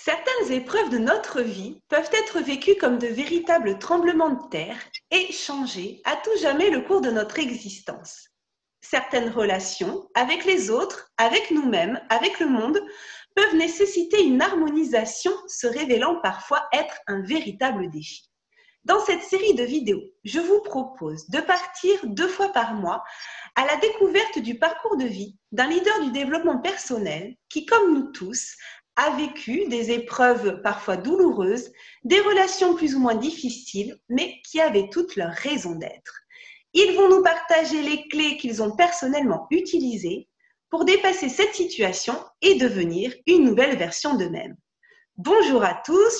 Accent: French